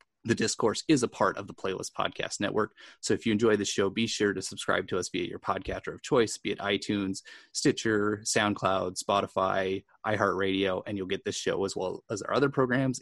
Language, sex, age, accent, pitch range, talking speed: English, male, 30-49, American, 95-110 Hz, 210 wpm